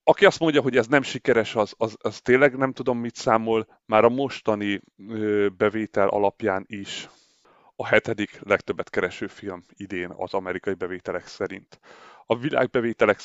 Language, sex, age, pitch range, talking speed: Hungarian, male, 30-49, 100-115 Hz, 150 wpm